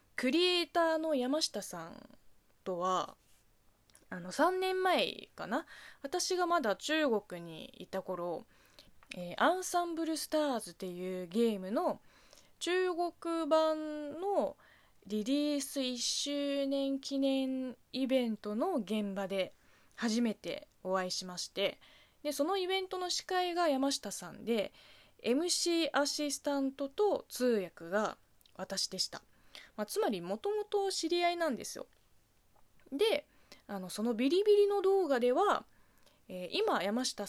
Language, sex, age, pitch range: Japanese, female, 20-39, 195-320 Hz